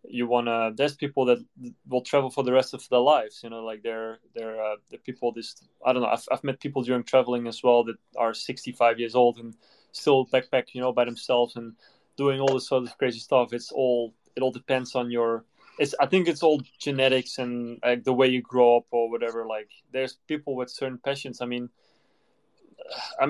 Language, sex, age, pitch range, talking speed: English, male, 20-39, 120-140 Hz, 220 wpm